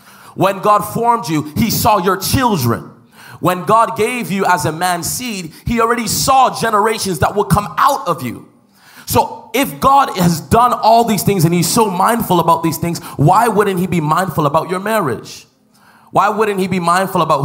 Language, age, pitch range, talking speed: English, 20-39, 135-180 Hz, 190 wpm